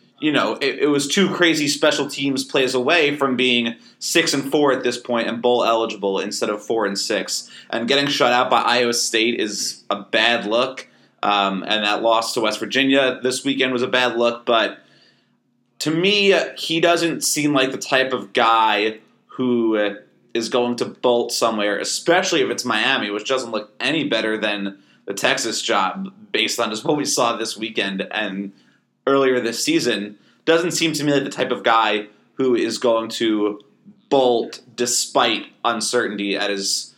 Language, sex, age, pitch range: English, male, 30-49, 110-145 Hz